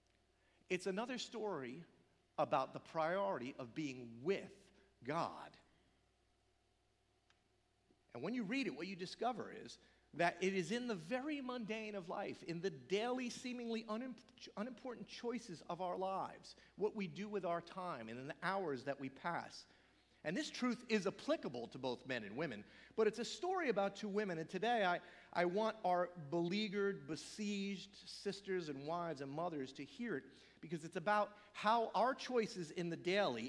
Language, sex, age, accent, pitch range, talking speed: English, male, 40-59, American, 160-225 Hz, 165 wpm